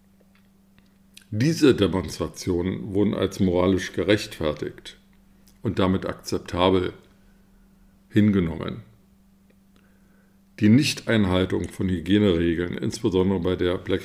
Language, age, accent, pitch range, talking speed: German, 50-69, German, 95-110 Hz, 75 wpm